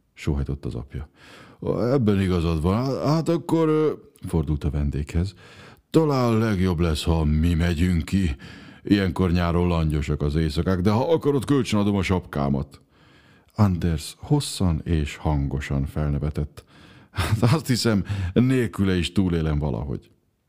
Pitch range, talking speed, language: 80-110 Hz, 125 wpm, Hungarian